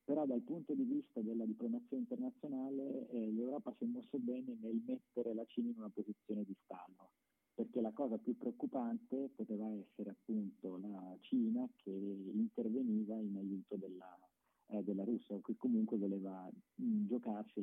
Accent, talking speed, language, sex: native, 160 wpm, Italian, male